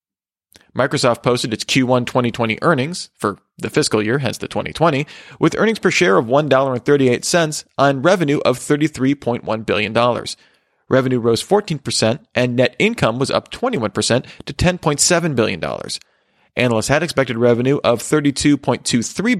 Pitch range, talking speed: 115-150 Hz, 130 wpm